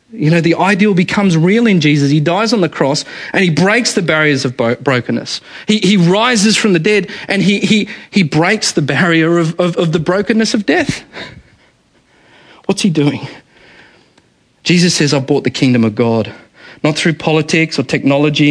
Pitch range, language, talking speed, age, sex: 140-190 Hz, English, 180 wpm, 40-59, male